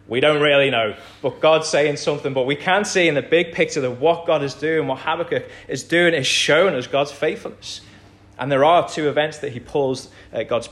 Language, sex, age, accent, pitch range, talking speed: English, male, 20-39, British, 105-130 Hz, 220 wpm